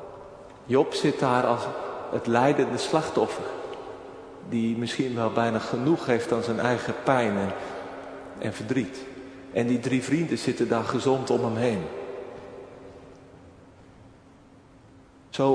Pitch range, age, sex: 115-140 Hz, 40-59, male